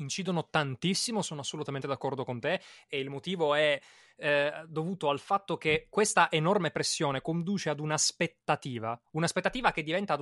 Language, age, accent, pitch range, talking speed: Italian, 20-39, native, 145-195 Hz, 155 wpm